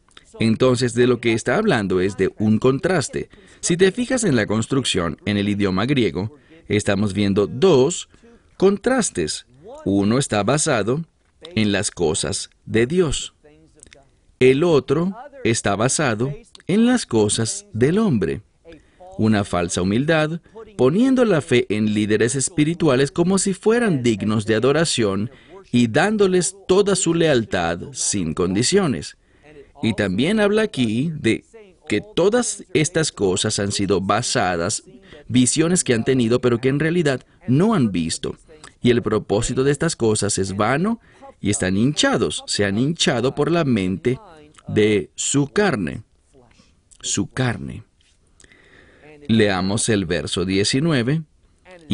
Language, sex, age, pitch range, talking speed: English, male, 50-69, 105-165 Hz, 130 wpm